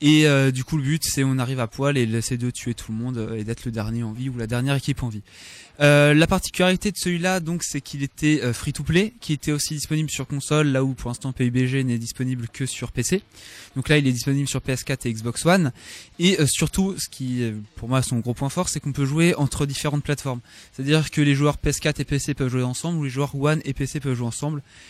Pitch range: 125-145 Hz